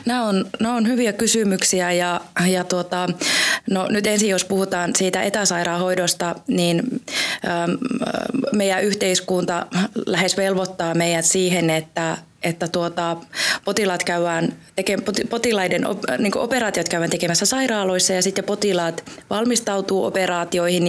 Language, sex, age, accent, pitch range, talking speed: Finnish, female, 20-39, native, 180-225 Hz, 105 wpm